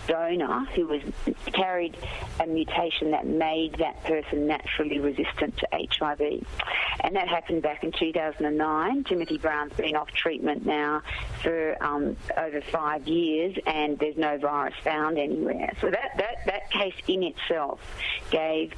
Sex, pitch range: female, 150-170 Hz